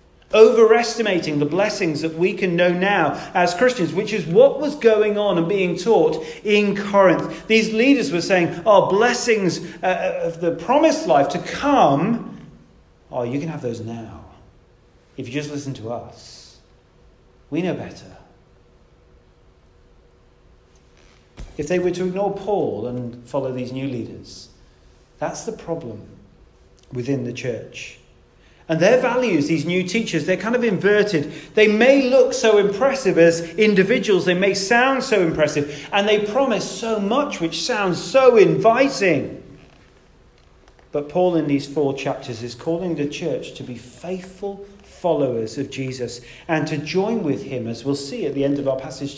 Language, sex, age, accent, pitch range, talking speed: English, male, 40-59, British, 135-205 Hz, 155 wpm